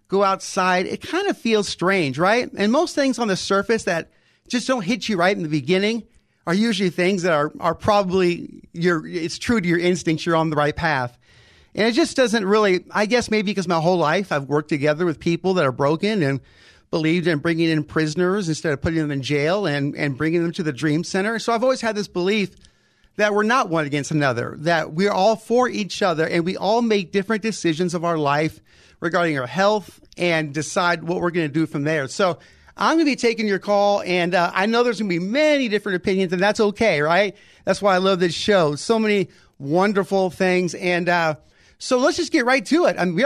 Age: 40-59